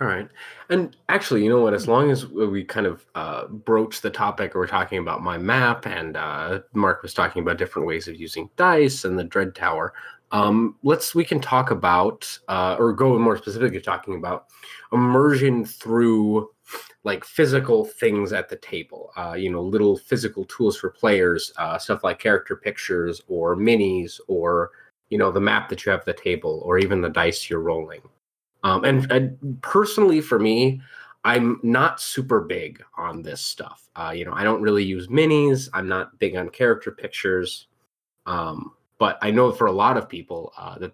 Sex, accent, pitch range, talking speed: male, American, 95-145 Hz, 190 wpm